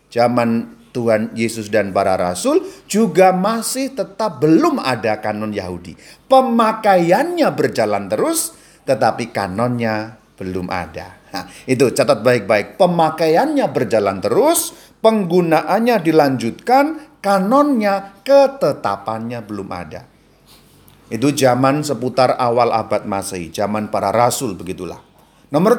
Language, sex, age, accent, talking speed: Indonesian, male, 40-59, native, 100 wpm